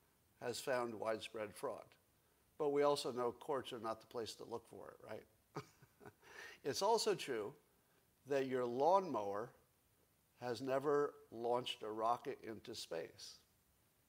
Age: 50-69